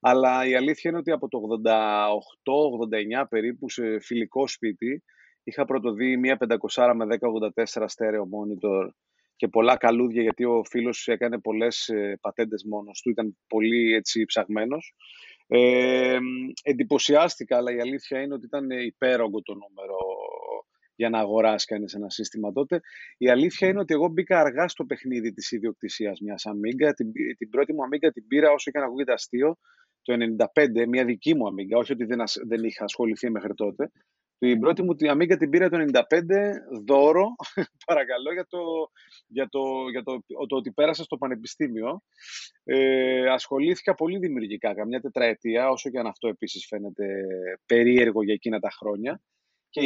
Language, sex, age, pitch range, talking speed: Greek, male, 30-49, 115-160 Hz, 155 wpm